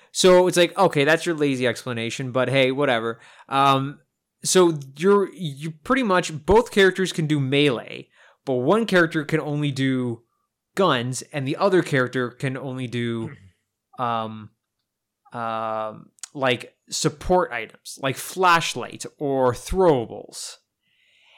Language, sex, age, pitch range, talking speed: English, male, 20-39, 125-170 Hz, 135 wpm